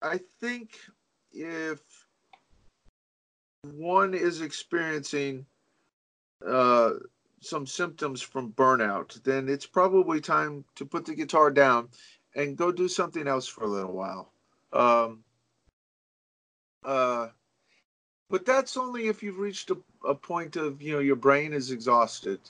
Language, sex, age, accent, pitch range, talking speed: English, male, 40-59, American, 120-180 Hz, 125 wpm